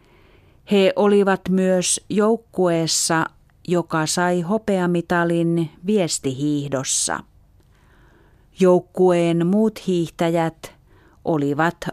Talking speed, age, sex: 60 wpm, 40-59, female